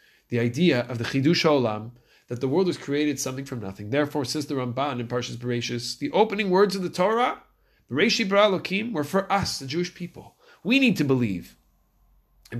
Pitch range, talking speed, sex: 125-195 Hz, 190 wpm, male